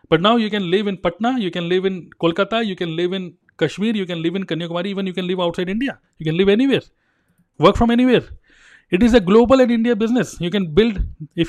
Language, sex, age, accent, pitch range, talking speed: Hindi, male, 30-49, native, 170-210 Hz, 240 wpm